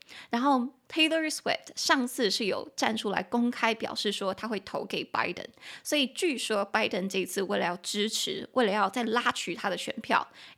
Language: Chinese